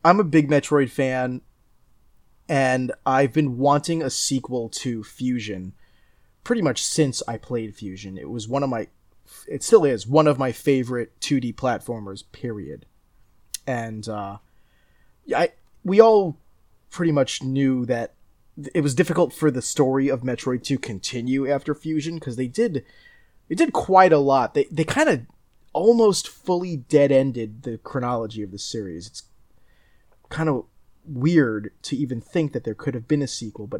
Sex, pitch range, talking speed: male, 115-155 Hz, 160 wpm